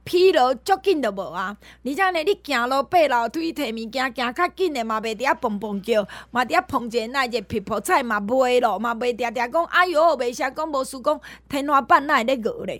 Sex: female